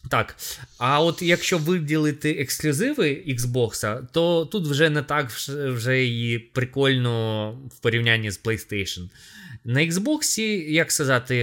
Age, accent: 20-39, native